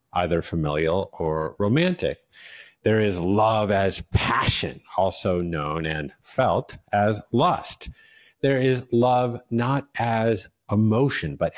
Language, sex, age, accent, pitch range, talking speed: English, male, 50-69, American, 90-125 Hz, 115 wpm